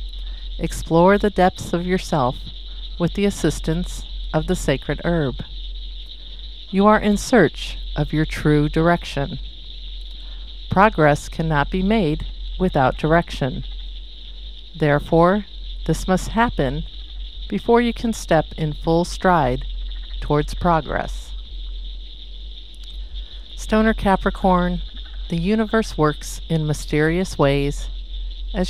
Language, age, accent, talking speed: English, 50-69, American, 100 wpm